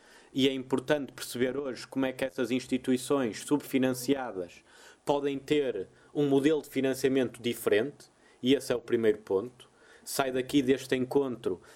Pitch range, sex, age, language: 120-135 Hz, male, 20-39, Portuguese